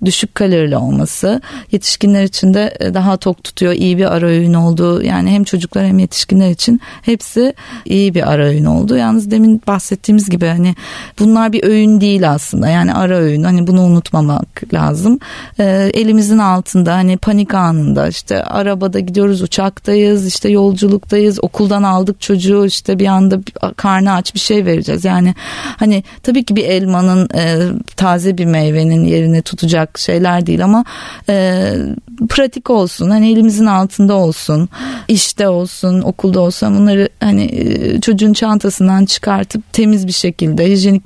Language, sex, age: Turkish, female, 30-49